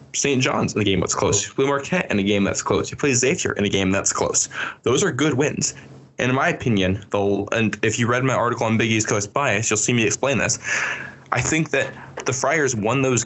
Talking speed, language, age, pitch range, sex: 240 wpm, English, 10-29, 105-140 Hz, male